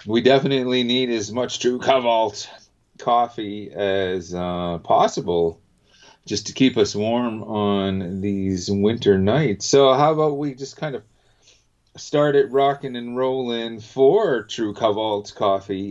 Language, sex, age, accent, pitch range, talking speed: English, male, 30-49, American, 95-120 Hz, 135 wpm